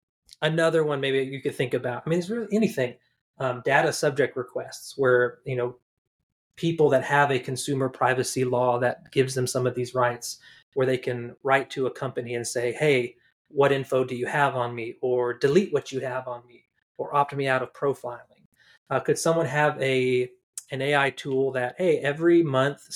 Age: 30-49